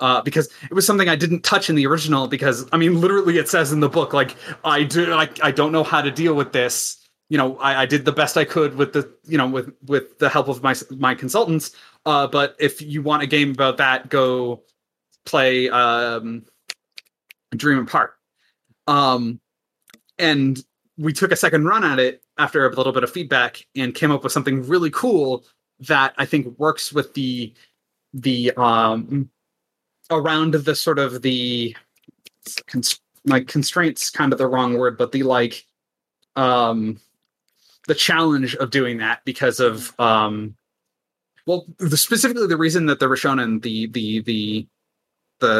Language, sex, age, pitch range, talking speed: English, male, 30-49, 125-155 Hz, 175 wpm